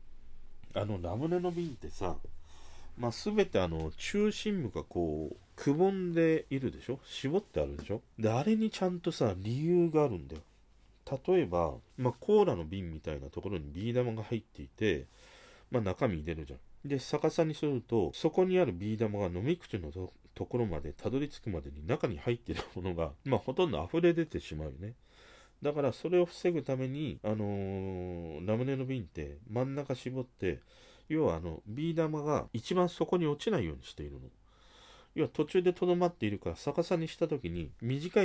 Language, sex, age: Japanese, male, 40-59